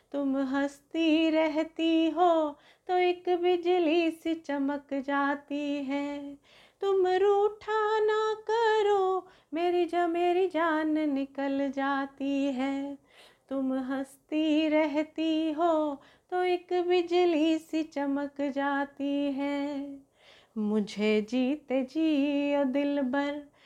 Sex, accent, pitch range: female, native, 280-350 Hz